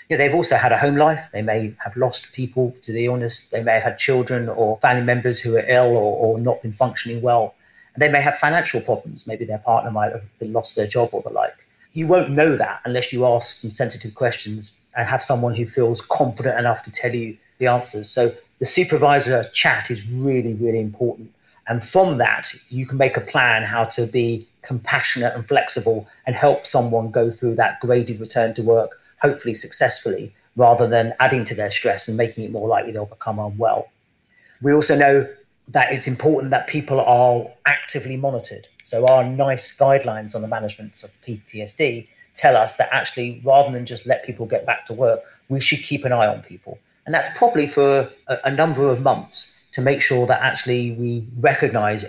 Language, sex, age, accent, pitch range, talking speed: English, male, 40-59, British, 115-135 Hz, 200 wpm